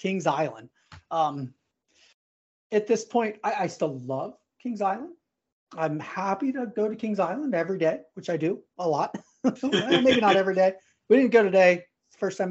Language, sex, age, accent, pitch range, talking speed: English, male, 30-49, American, 170-240 Hz, 175 wpm